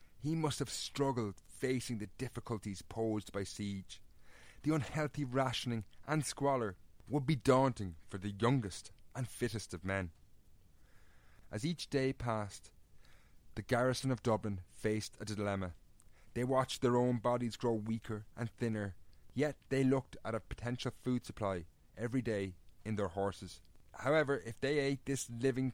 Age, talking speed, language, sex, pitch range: 30-49, 150 wpm, English, male, 100-125 Hz